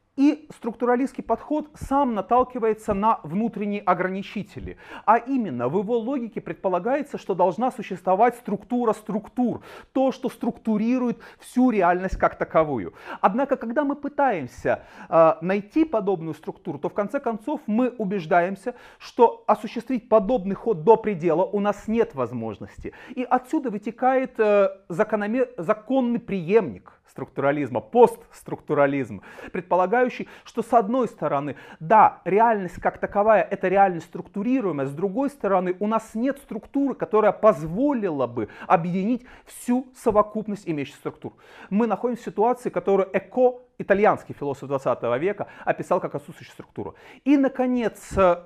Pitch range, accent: 185-245 Hz, native